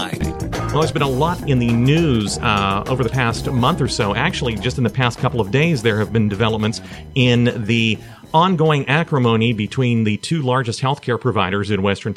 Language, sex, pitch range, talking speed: English, male, 110-140 Hz, 195 wpm